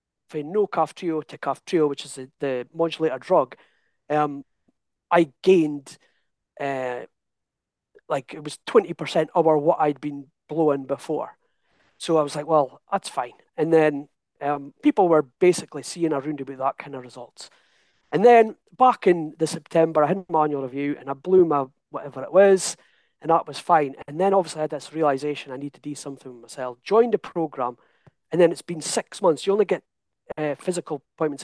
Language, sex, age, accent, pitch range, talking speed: English, male, 40-59, British, 140-175 Hz, 180 wpm